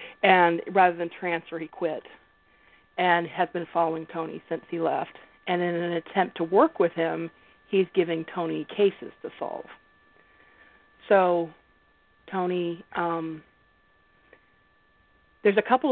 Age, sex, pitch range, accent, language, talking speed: 40-59, female, 165-195 Hz, American, English, 130 wpm